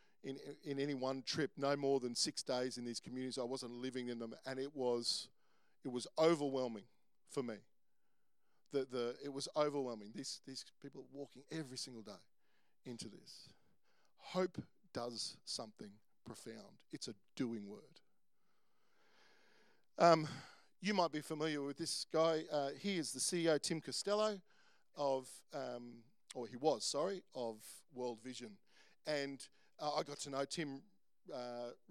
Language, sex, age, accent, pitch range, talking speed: English, male, 50-69, Australian, 130-160 Hz, 150 wpm